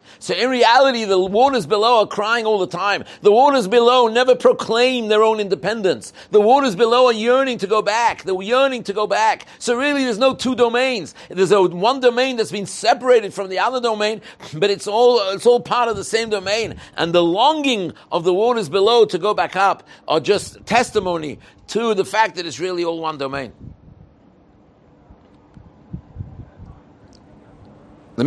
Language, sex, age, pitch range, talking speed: English, male, 60-79, 175-220 Hz, 175 wpm